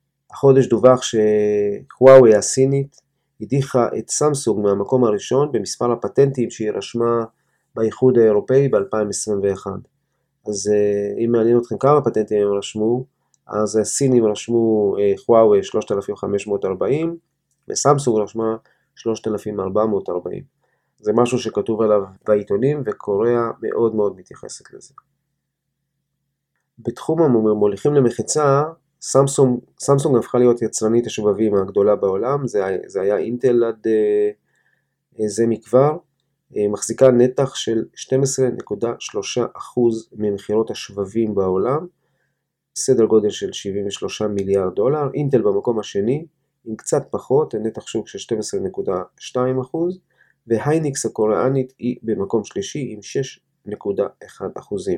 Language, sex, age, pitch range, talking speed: Hebrew, male, 30-49, 105-140 Hz, 95 wpm